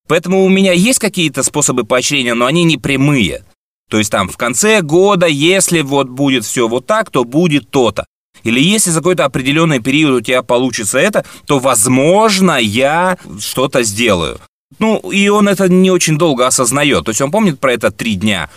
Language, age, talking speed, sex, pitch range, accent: Russian, 20-39, 185 wpm, male, 125-180 Hz, native